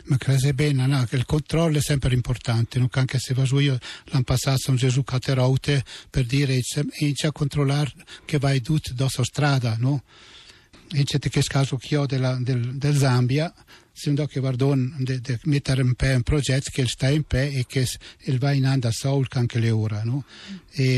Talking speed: 215 wpm